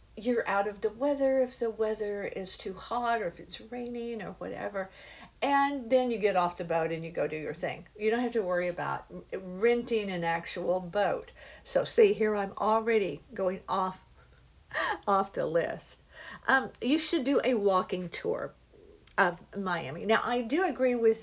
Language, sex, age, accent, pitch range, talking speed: English, female, 50-69, American, 175-235 Hz, 180 wpm